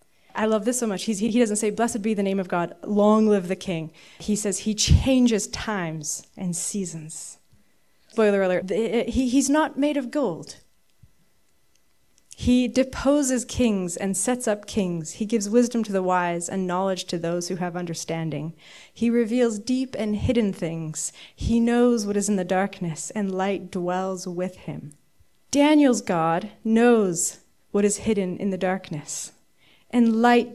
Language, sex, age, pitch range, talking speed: English, female, 30-49, 185-240 Hz, 160 wpm